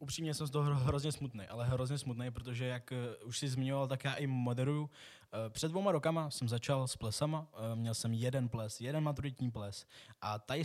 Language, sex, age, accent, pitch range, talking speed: Czech, male, 20-39, native, 120-145 Hz, 190 wpm